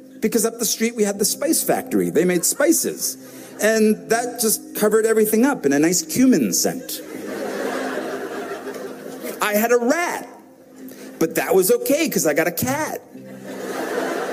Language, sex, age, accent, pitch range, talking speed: English, male, 50-69, American, 165-275 Hz, 150 wpm